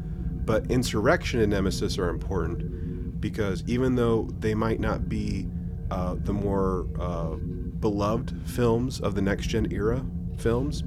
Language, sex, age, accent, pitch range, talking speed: English, male, 30-49, American, 85-100 Hz, 140 wpm